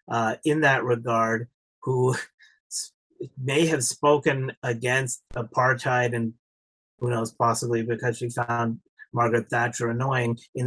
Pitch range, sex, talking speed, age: 120-150 Hz, male, 120 wpm, 30-49